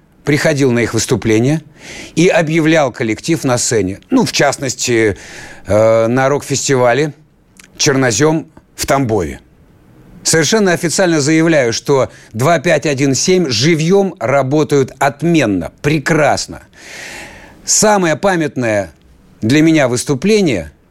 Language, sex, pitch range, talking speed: Russian, male, 110-155 Hz, 90 wpm